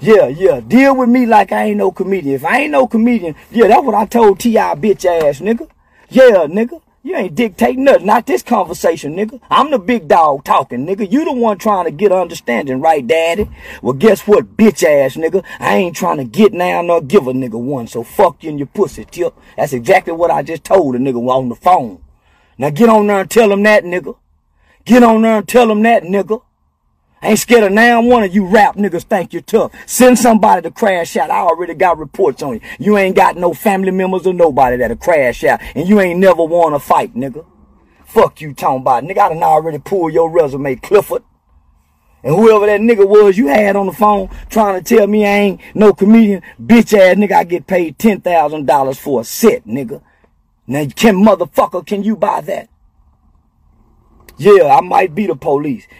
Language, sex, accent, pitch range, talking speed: English, male, American, 160-220 Hz, 210 wpm